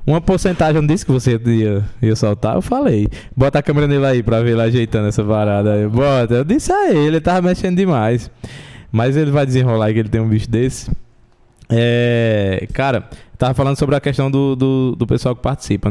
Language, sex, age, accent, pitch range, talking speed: Portuguese, male, 20-39, Brazilian, 120-160 Hz, 200 wpm